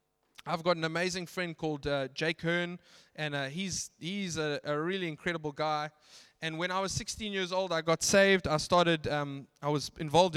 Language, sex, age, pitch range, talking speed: English, male, 20-39, 170-215 Hz, 195 wpm